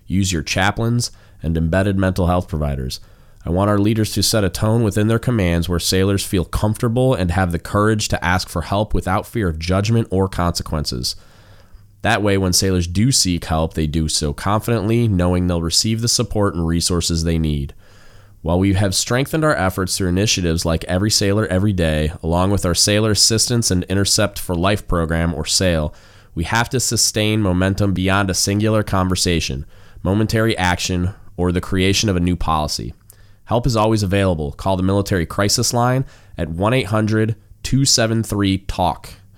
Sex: male